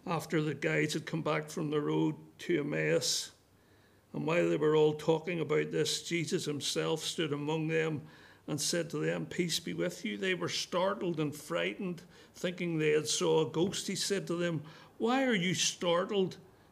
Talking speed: 185 wpm